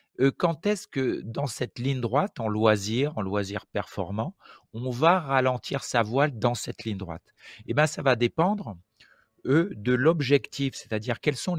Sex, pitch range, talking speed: male, 110-145 Hz, 165 wpm